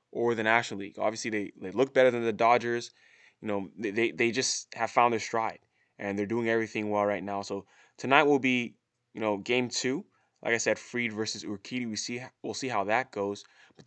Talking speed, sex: 225 wpm, male